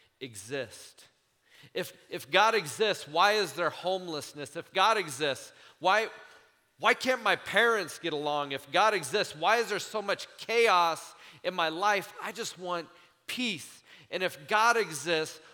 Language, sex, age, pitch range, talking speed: English, male, 40-59, 145-190 Hz, 150 wpm